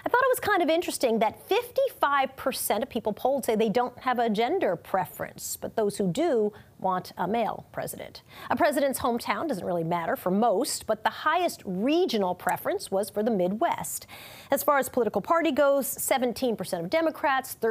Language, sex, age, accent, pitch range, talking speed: English, female, 40-59, American, 200-285 Hz, 180 wpm